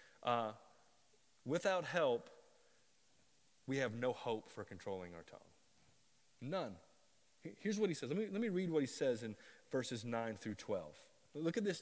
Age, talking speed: 30-49, 155 wpm